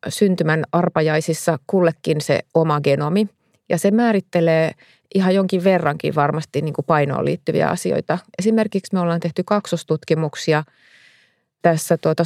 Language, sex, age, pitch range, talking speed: Finnish, female, 30-49, 150-175 Hz, 120 wpm